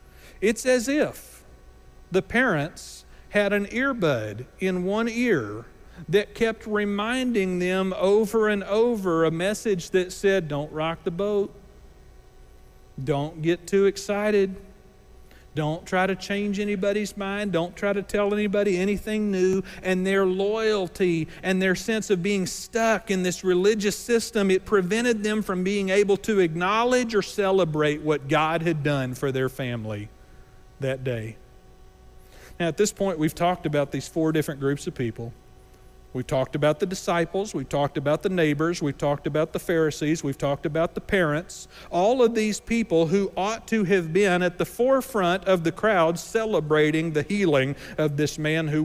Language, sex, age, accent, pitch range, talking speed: English, male, 40-59, American, 145-200 Hz, 160 wpm